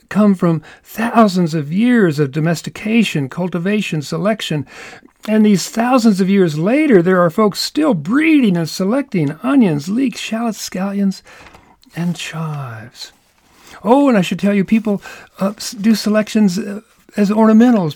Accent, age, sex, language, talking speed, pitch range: American, 50-69, male, English, 135 wpm, 175-230 Hz